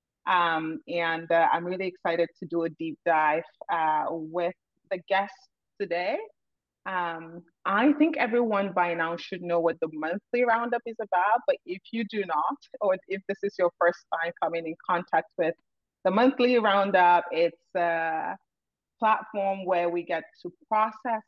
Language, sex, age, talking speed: English, female, 30-49, 160 wpm